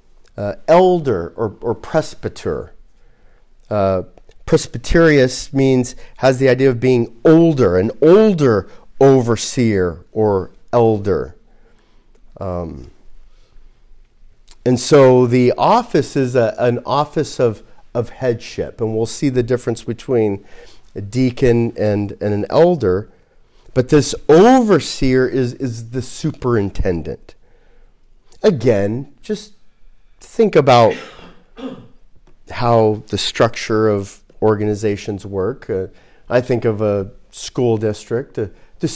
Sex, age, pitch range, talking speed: male, 40-59, 110-130 Hz, 105 wpm